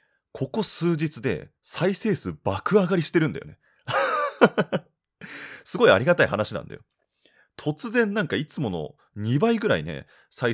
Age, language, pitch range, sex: 30-49, Japanese, 95-150 Hz, male